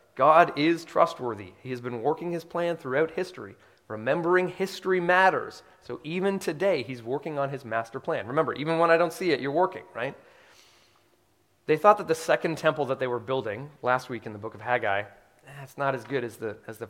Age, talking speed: 30-49, 205 wpm